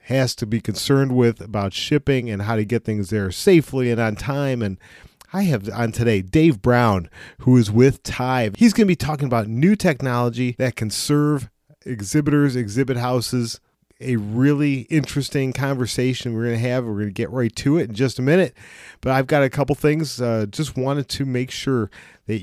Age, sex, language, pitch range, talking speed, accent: 40-59, male, English, 105-135 Hz, 200 wpm, American